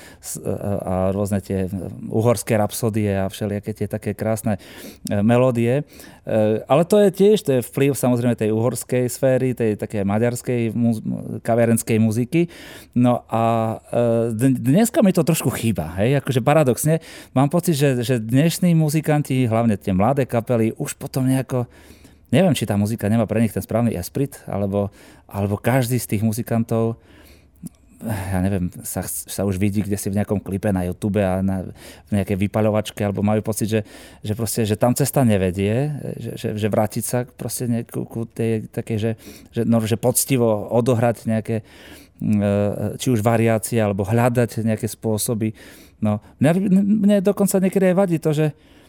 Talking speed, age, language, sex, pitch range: 150 wpm, 30-49, Slovak, male, 105-140 Hz